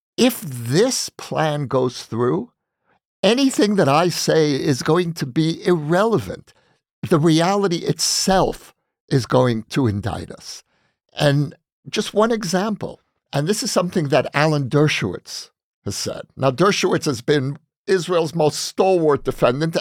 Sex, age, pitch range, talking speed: male, 50-69, 130-175 Hz, 130 wpm